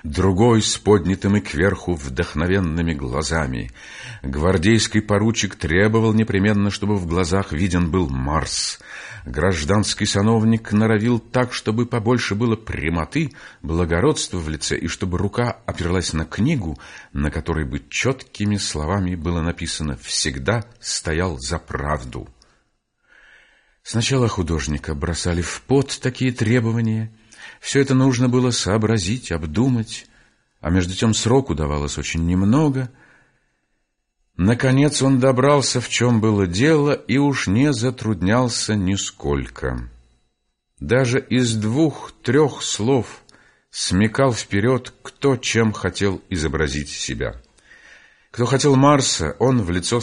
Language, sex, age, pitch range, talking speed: Russian, male, 50-69, 85-120 Hz, 115 wpm